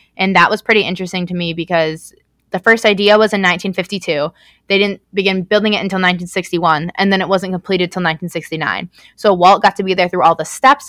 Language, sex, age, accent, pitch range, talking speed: English, female, 20-39, American, 175-205 Hz, 210 wpm